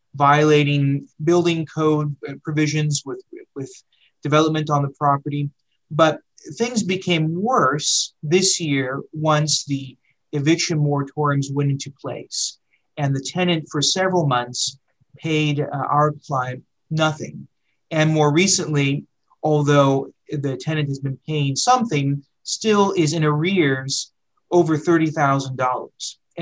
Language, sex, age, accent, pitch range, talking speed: English, male, 30-49, American, 140-170 Hz, 115 wpm